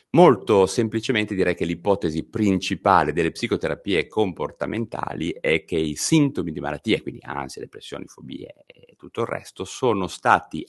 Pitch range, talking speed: 80-115 Hz, 140 wpm